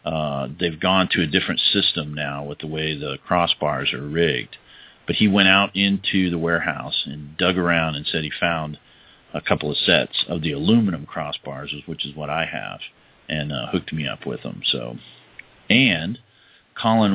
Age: 40-59